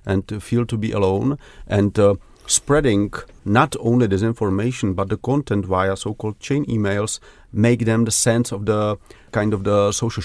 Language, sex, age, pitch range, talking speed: Romanian, male, 40-59, 100-115 Hz, 175 wpm